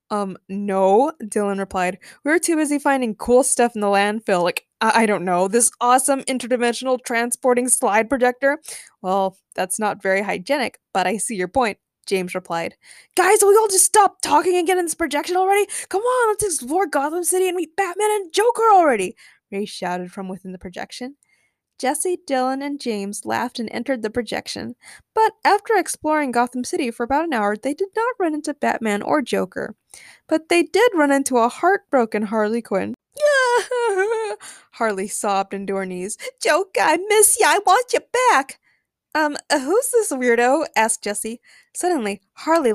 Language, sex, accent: English, female, American